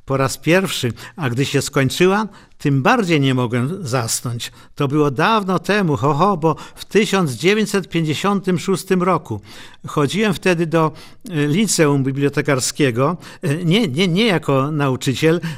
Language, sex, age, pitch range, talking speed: Polish, male, 50-69, 135-170 Hz, 125 wpm